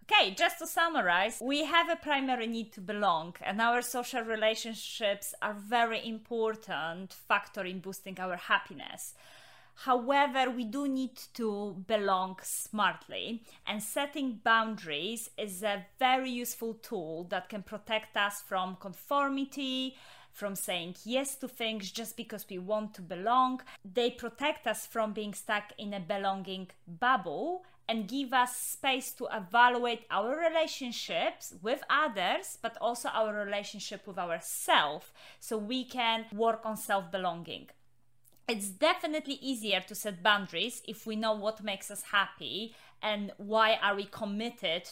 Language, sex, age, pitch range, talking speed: English, female, 30-49, 200-255 Hz, 140 wpm